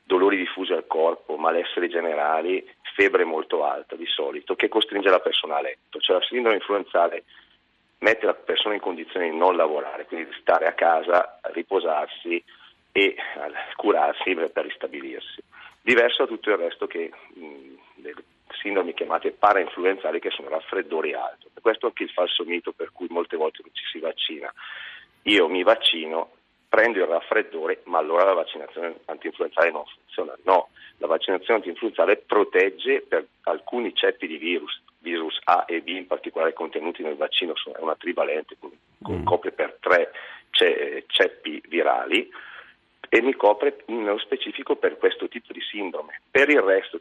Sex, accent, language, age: male, native, Italian, 40-59